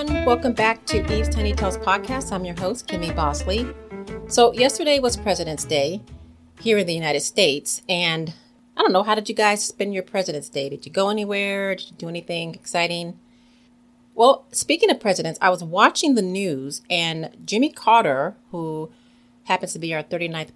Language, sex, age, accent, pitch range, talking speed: English, female, 40-59, American, 170-240 Hz, 180 wpm